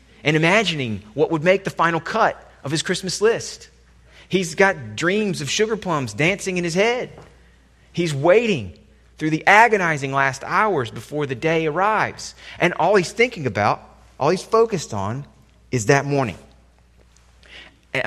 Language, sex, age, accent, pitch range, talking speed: English, male, 30-49, American, 95-155 Hz, 155 wpm